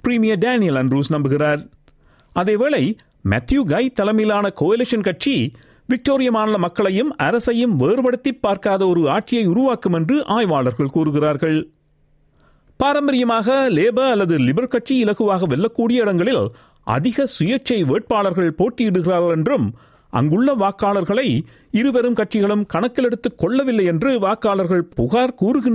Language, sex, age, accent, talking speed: Tamil, male, 50-69, native, 100 wpm